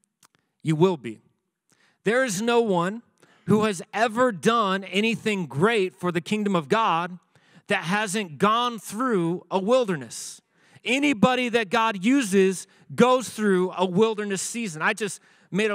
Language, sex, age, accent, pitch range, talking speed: English, male, 40-59, American, 180-230 Hz, 135 wpm